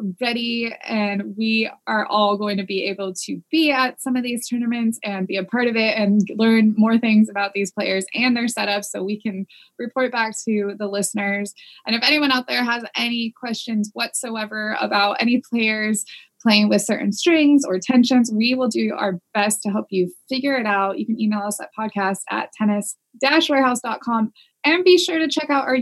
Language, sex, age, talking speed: English, female, 20-39, 195 wpm